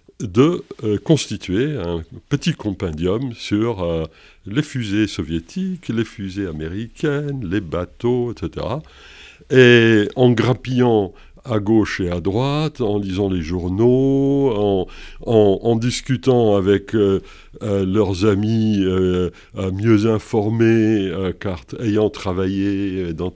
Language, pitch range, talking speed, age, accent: French, 95-125 Hz, 115 wpm, 50-69, French